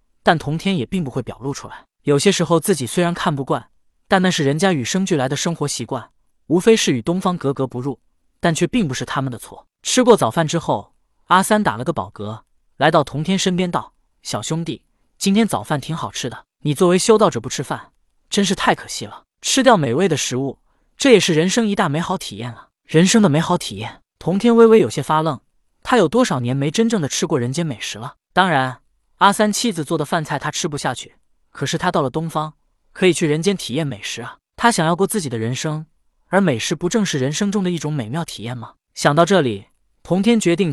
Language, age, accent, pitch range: Chinese, 20-39, native, 140-190 Hz